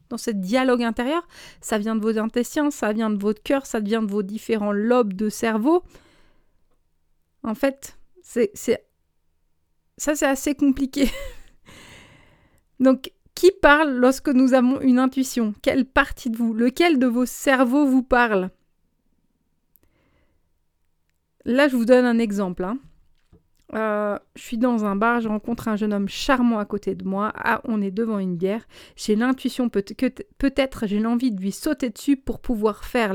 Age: 30-49